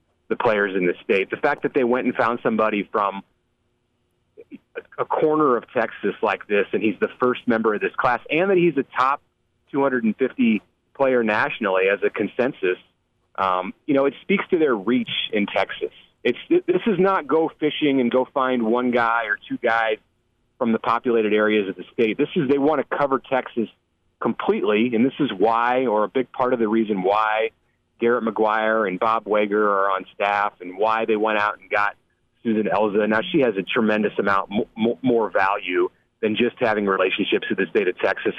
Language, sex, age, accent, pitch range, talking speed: English, male, 40-59, American, 110-140 Hz, 195 wpm